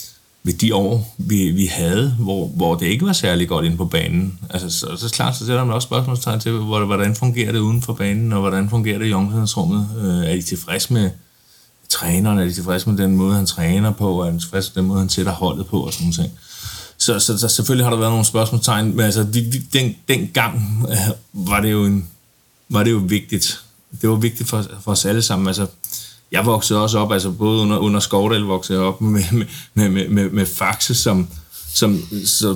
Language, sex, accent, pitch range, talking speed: Danish, male, native, 95-120 Hz, 220 wpm